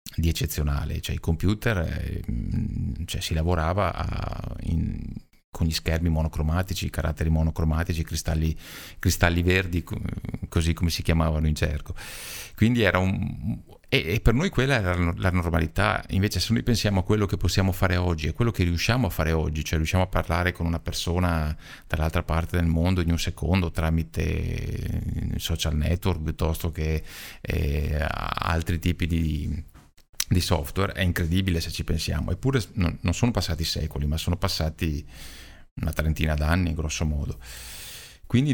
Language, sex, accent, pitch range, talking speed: Italian, male, native, 80-100 Hz, 155 wpm